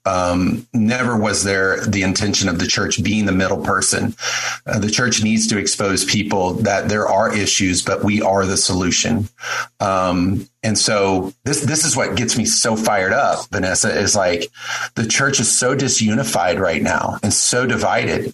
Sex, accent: male, American